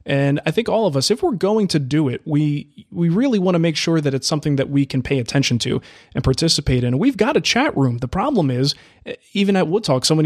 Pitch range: 135-170 Hz